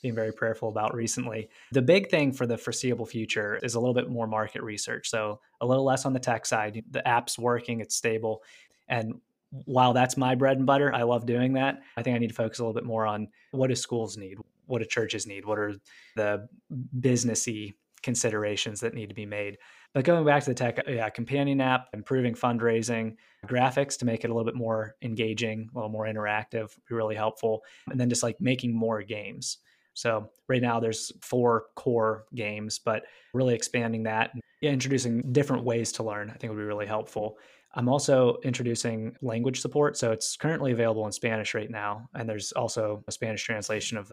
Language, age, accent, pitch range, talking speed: English, 20-39, American, 110-125 Hz, 205 wpm